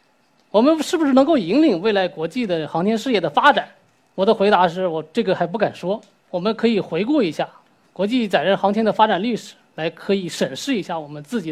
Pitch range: 180-245 Hz